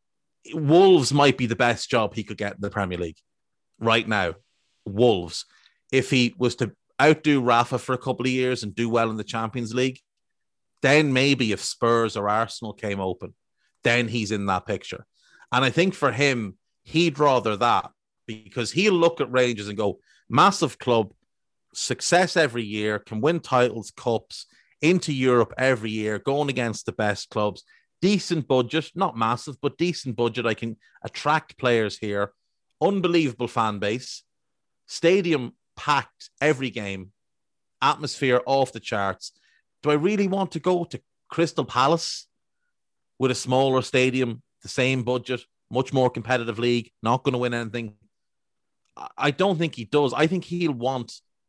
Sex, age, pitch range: male, 30-49, 110-140 Hz